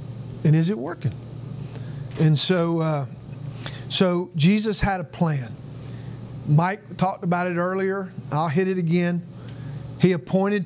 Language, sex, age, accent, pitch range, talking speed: English, male, 50-69, American, 135-180 Hz, 130 wpm